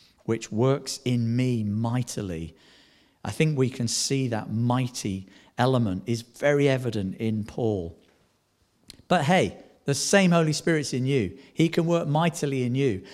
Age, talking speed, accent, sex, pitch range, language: 50-69, 145 wpm, British, male, 110-165 Hz, English